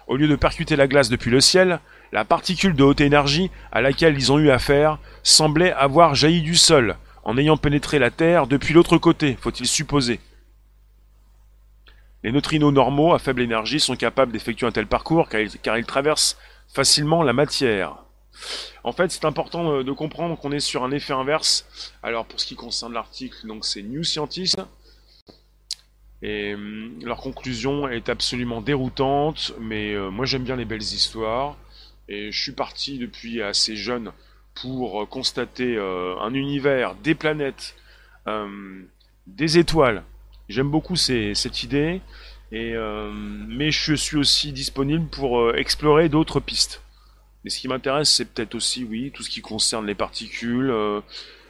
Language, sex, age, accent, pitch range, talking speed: French, male, 30-49, French, 110-150 Hz, 170 wpm